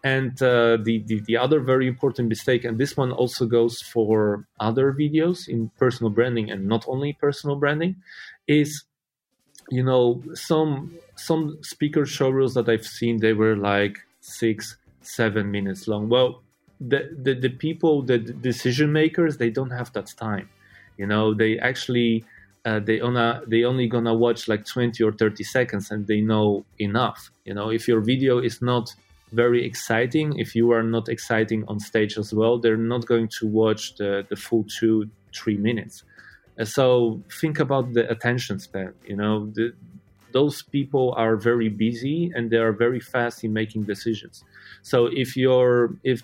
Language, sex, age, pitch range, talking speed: Romanian, male, 30-49, 110-125 Hz, 170 wpm